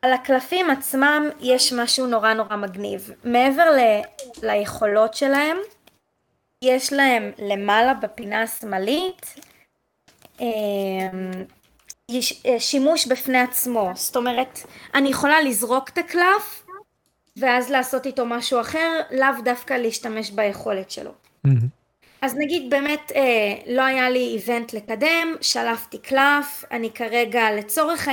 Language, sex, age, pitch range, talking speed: Hebrew, female, 20-39, 220-275 Hz, 105 wpm